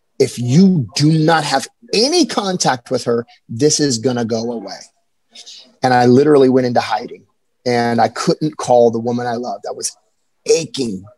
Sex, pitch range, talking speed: male, 120-150 Hz, 170 wpm